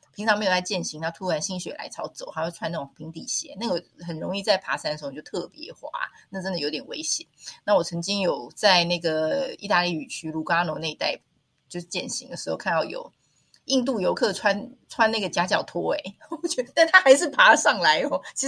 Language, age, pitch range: Chinese, 30-49, 165-255 Hz